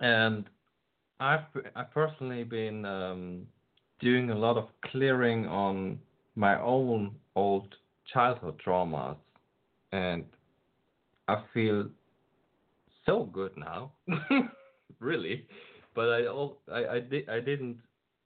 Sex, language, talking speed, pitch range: male, English, 100 wpm, 95-125 Hz